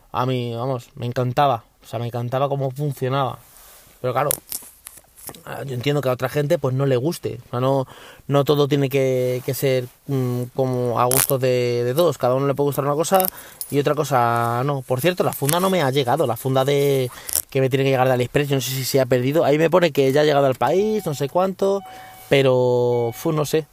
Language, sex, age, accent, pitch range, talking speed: Spanish, male, 20-39, Spanish, 125-145 Hz, 230 wpm